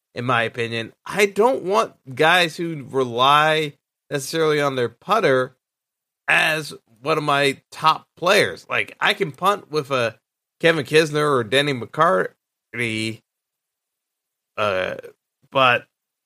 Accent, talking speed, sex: American, 115 wpm, male